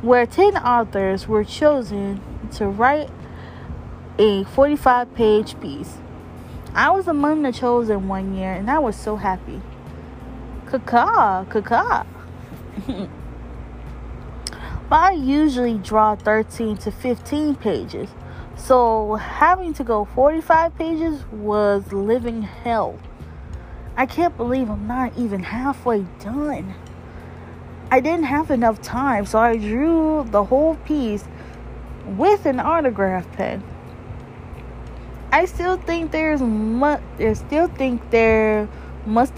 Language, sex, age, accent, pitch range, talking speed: English, female, 20-39, American, 195-285 Hz, 115 wpm